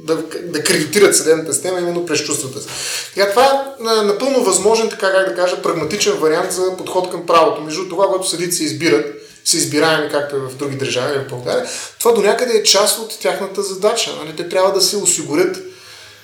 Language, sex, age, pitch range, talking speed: Bulgarian, male, 30-49, 145-190 Hz, 185 wpm